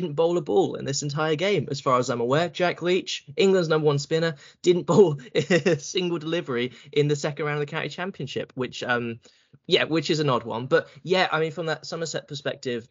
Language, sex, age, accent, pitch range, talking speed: English, male, 10-29, British, 125-155 Hz, 225 wpm